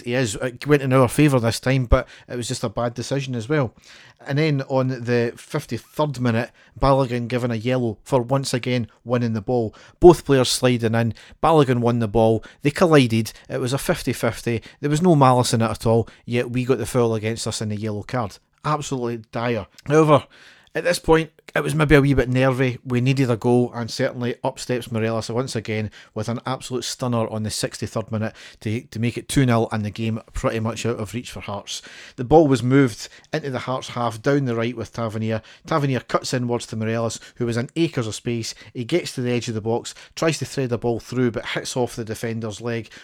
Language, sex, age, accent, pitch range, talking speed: English, male, 40-59, British, 115-130 Hz, 220 wpm